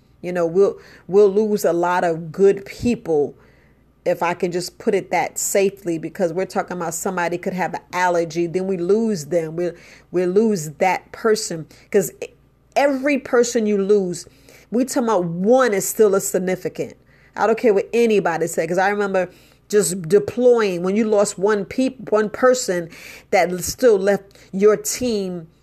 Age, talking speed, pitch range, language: 40-59, 170 wpm, 175-210 Hz, English